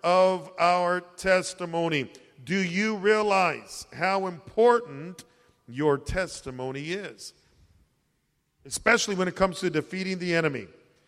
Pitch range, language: 135-190 Hz, English